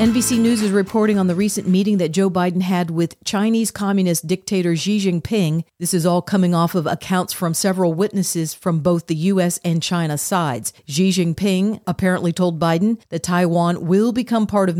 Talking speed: 185 wpm